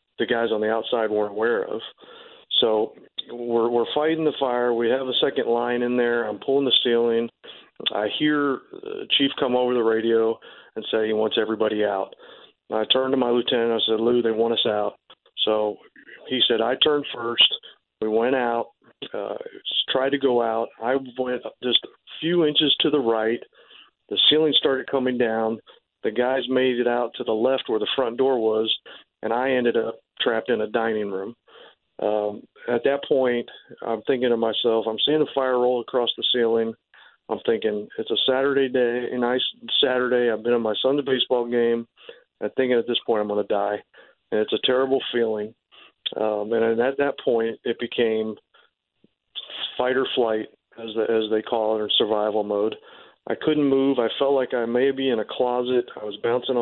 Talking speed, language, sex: 195 wpm, English, male